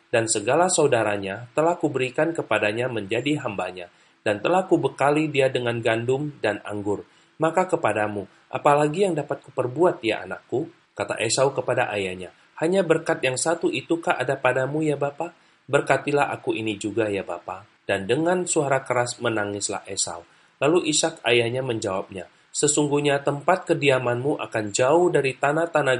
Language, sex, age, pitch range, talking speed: Indonesian, male, 30-49, 115-155 Hz, 140 wpm